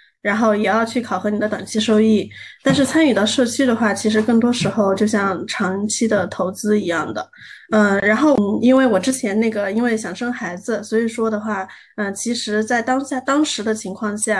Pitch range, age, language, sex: 200-230 Hz, 20-39, Chinese, female